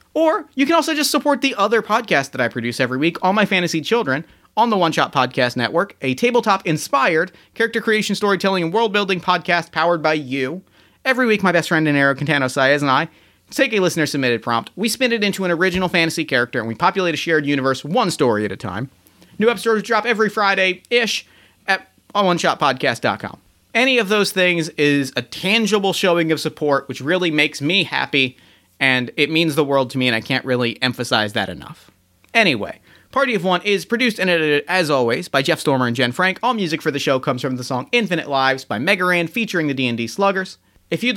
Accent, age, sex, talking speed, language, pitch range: American, 30-49, male, 205 wpm, English, 140-210 Hz